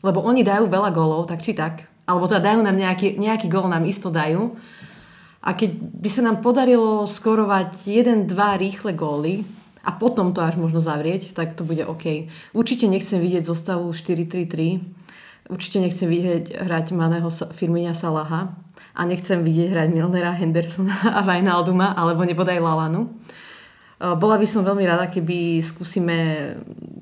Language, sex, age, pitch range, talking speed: Slovak, female, 30-49, 170-200 Hz, 155 wpm